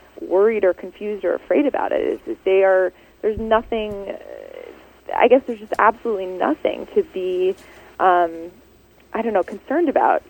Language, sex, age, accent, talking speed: English, female, 20-39, American, 155 wpm